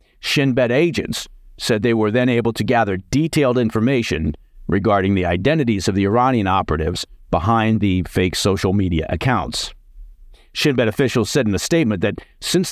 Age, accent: 50-69, American